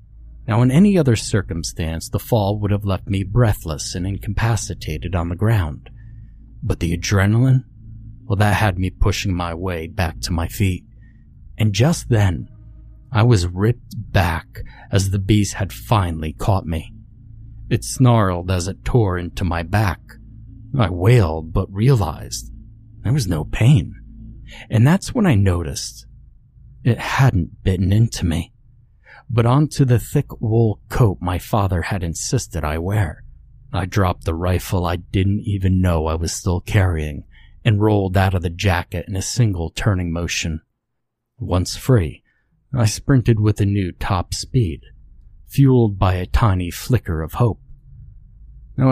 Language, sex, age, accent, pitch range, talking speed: English, male, 30-49, American, 90-115 Hz, 150 wpm